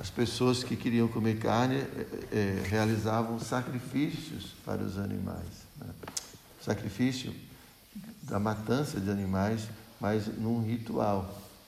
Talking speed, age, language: 105 wpm, 60-79, Portuguese